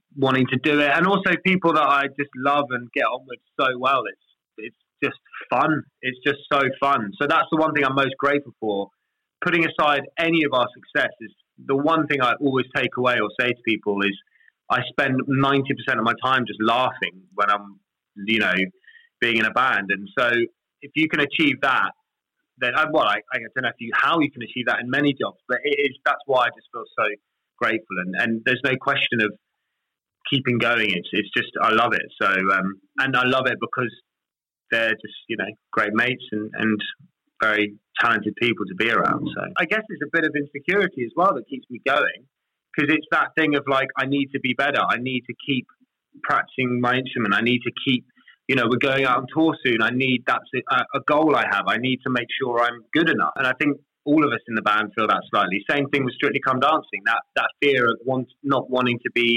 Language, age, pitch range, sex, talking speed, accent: English, 20-39, 115-145 Hz, male, 225 wpm, British